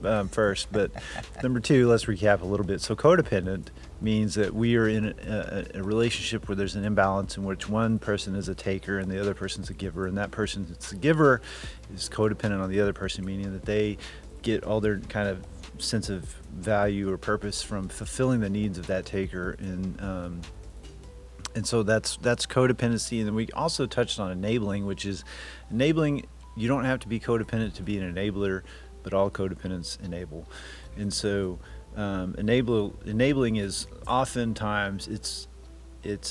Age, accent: 30-49, American